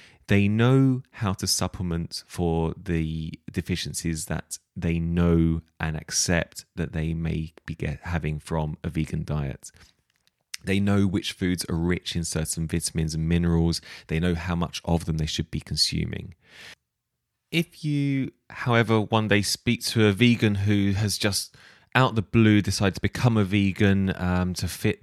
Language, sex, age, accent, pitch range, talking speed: English, male, 20-39, British, 85-105 Hz, 160 wpm